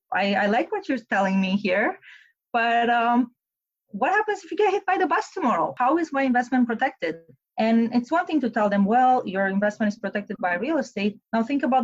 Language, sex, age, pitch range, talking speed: English, female, 30-49, 185-245 Hz, 220 wpm